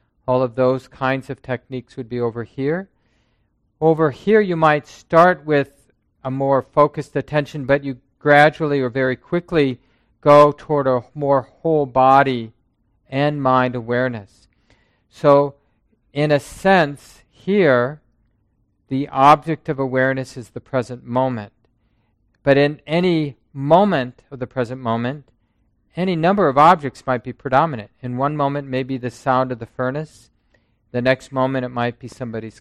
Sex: male